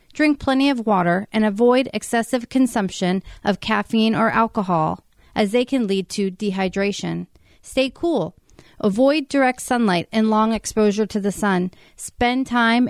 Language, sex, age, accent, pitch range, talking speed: English, female, 40-59, American, 205-245 Hz, 145 wpm